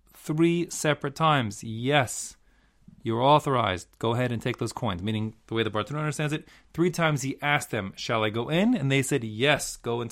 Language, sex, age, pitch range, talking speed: English, male, 30-49, 105-140 Hz, 200 wpm